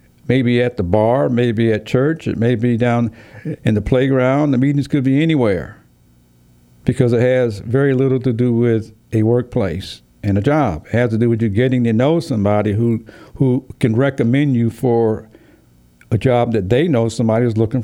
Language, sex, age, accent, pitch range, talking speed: English, male, 60-79, American, 95-125 Hz, 190 wpm